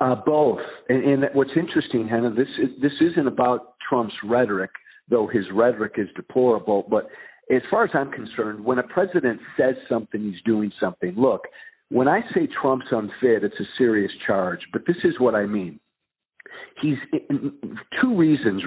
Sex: male